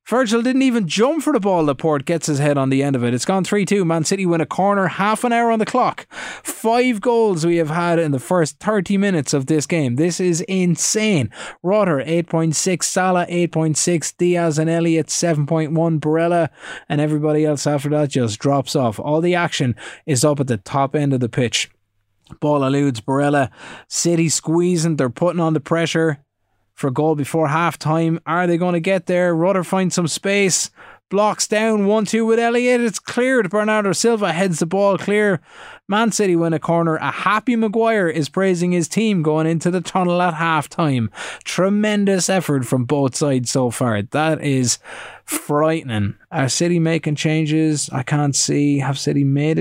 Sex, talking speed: male, 185 wpm